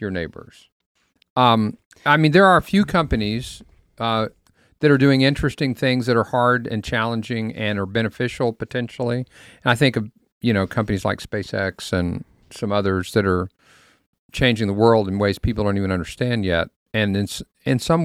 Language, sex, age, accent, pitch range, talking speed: English, male, 50-69, American, 100-130 Hz, 175 wpm